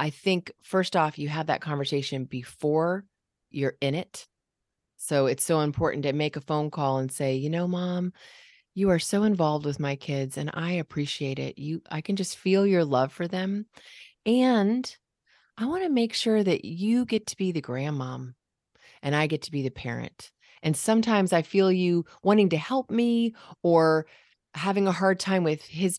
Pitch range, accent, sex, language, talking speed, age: 155-205 Hz, American, female, English, 190 wpm, 30-49